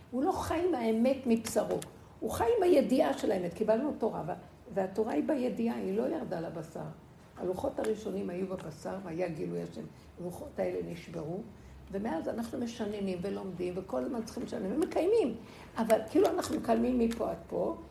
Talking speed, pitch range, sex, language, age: 160 wpm, 205-275 Hz, female, Hebrew, 60-79